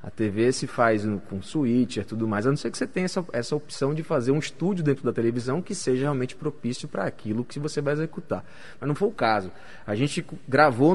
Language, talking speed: Portuguese, 230 wpm